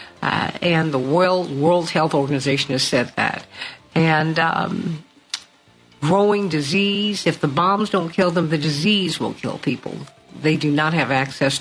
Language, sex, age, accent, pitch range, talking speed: English, female, 60-79, American, 155-195 Hz, 155 wpm